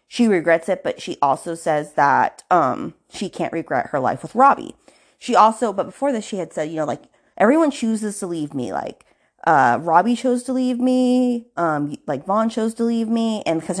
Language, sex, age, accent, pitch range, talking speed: English, female, 20-39, American, 160-230 Hz, 210 wpm